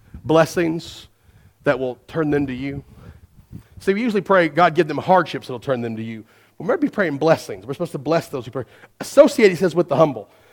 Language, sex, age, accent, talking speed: English, male, 40-59, American, 230 wpm